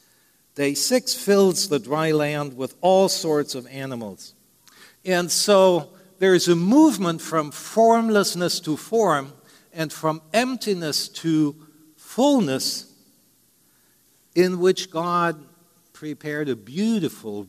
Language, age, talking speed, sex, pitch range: English, 60-79, 110 wpm, male, 135-185 Hz